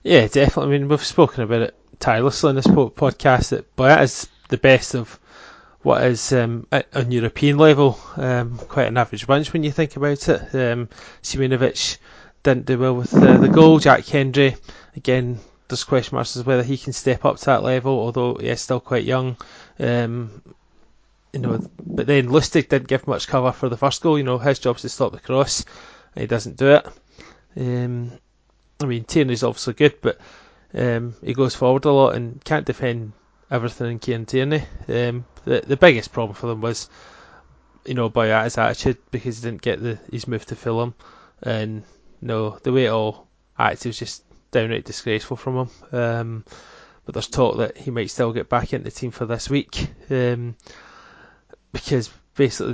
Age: 20-39